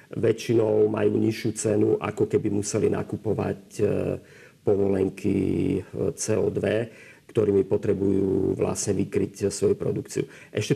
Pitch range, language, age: 100-110 Hz, Slovak, 40-59